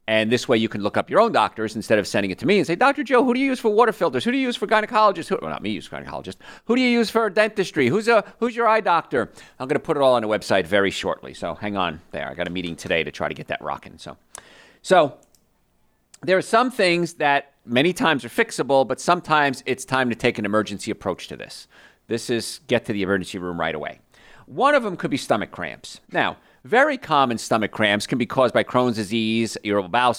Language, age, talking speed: English, 40-59, 250 wpm